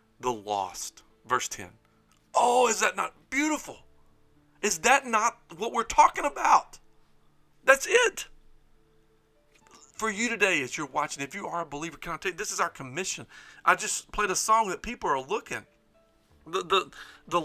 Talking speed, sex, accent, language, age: 165 wpm, male, American, English, 40-59